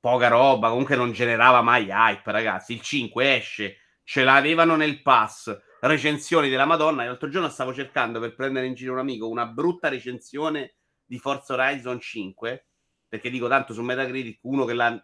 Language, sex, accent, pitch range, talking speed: Italian, male, native, 110-145 Hz, 170 wpm